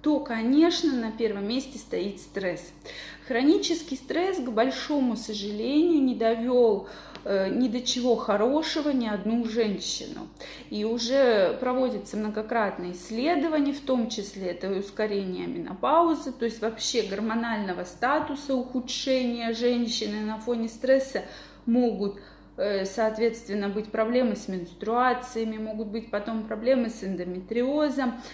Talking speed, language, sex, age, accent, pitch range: 115 wpm, Russian, female, 20-39, native, 220-265 Hz